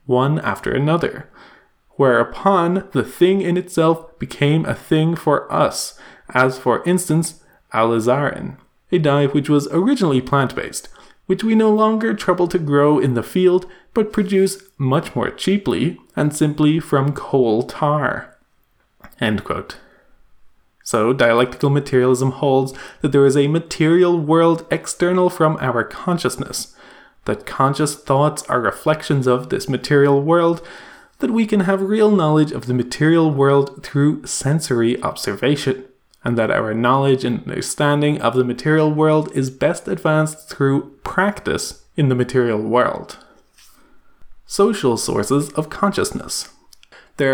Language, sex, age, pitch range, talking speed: English, male, 20-39, 130-165 Hz, 130 wpm